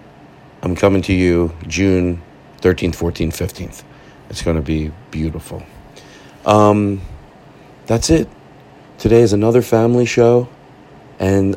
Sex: male